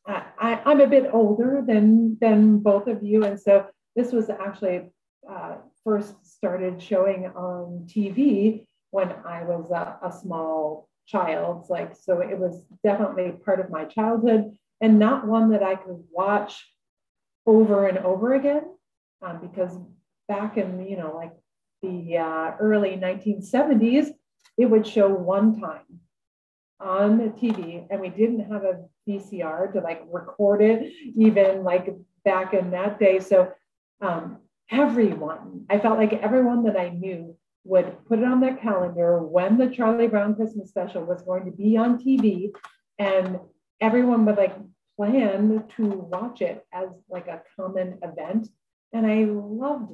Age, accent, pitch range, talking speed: 40-59, American, 185-220 Hz, 155 wpm